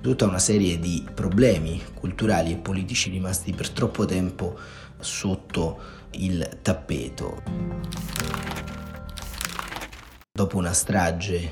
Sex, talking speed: male, 95 wpm